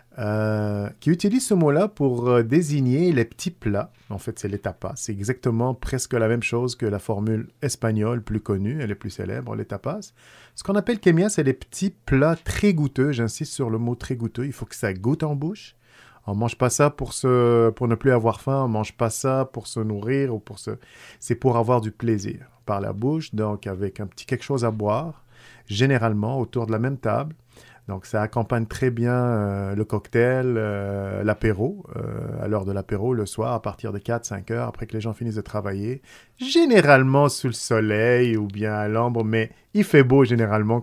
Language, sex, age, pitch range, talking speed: French, male, 40-59, 110-135 Hz, 210 wpm